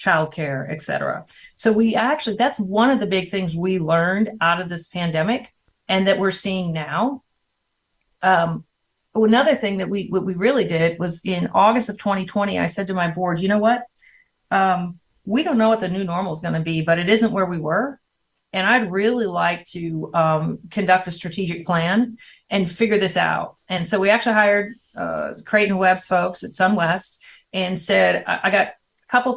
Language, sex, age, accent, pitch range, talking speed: English, female, 40-59, American, 170-215 Hz, 190 wpm